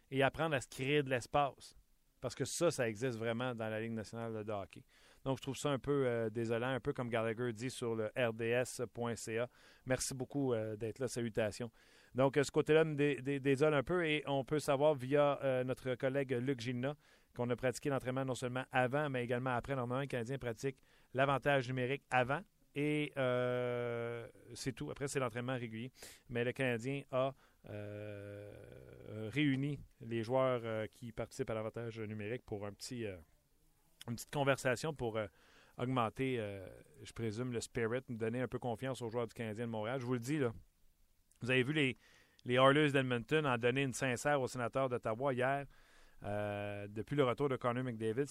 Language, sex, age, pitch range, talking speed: French, male, 40-59, 115-140 Hz, 190 wpm